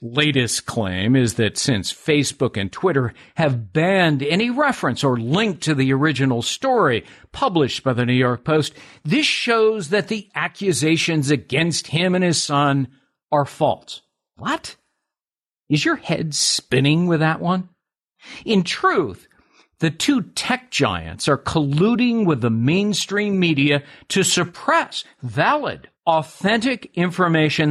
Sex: male